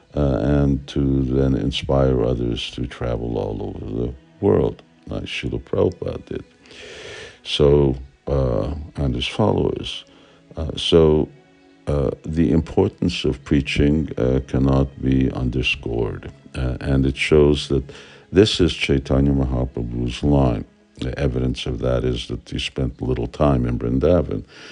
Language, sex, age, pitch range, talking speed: English, male, 60-79, 65-75 Hz, 130 wpm